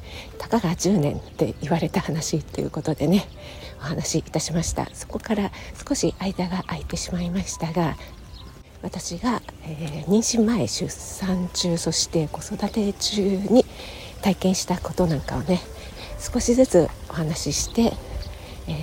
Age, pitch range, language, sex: 50-69, 150-200 Hz, Japanese, female